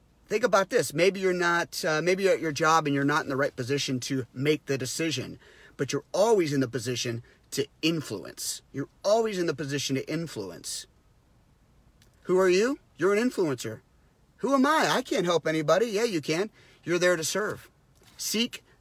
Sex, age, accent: male, 40-59, American